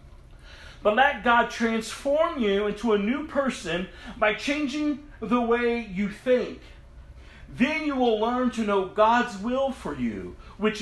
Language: English